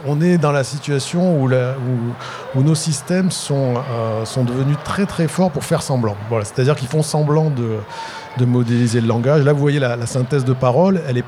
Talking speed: 220 wpm